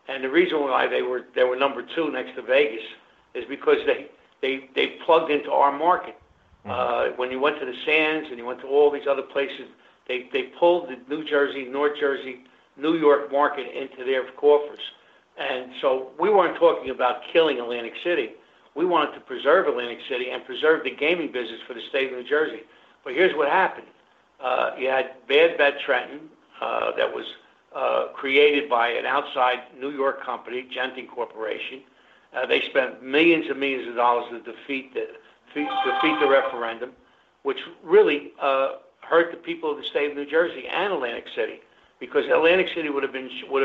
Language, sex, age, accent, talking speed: English, male, 60-79, American, 190 wpm